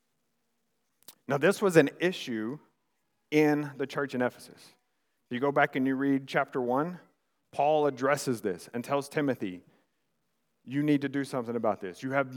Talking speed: 160 wpm